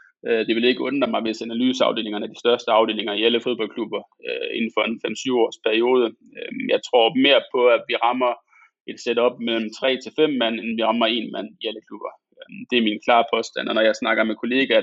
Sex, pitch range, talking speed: male, 110-145 Hz, 210 wpm